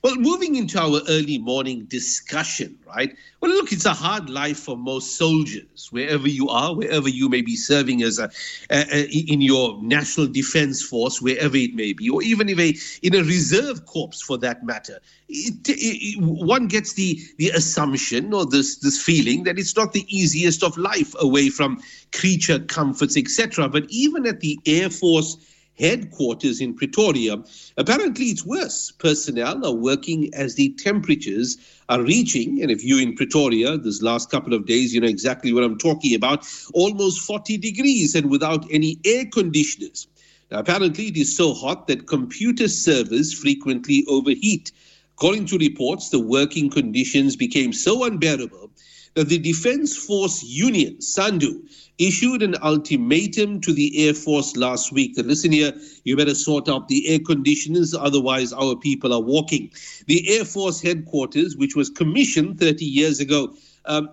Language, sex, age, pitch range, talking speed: English, male, 50-69, 145-210 Hz, 165 wpm